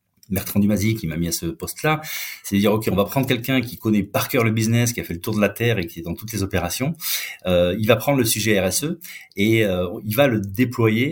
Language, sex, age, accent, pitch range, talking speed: French, male, 30-49, French, 95-125 Hz, 275 wpm